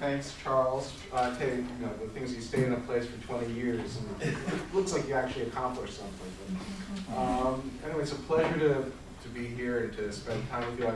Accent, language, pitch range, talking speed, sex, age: American, English, 95-120 Hz, 220 wpm, male, 40-59